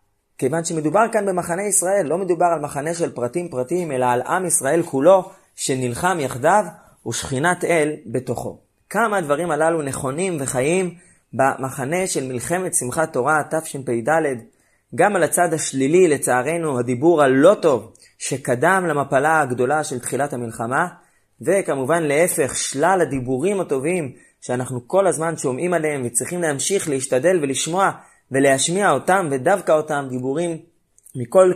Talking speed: 125 wpm